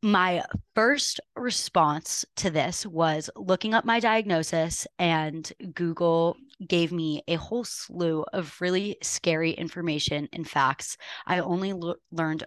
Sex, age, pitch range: female, 20-39, 155-185 Hz